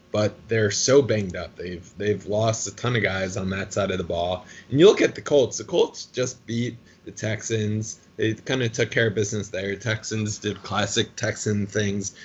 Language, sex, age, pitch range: English, male, 20-39, 95-110 Hz